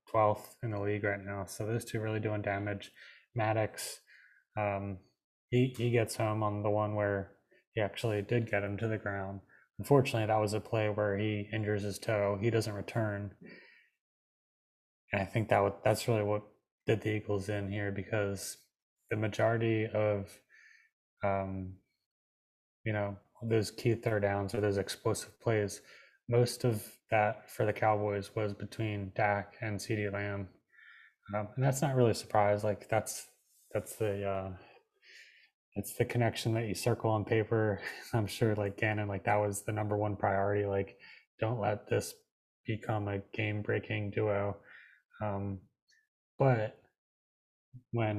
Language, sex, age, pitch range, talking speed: English, male, 20-39, 100-110 Hz, 155 wpm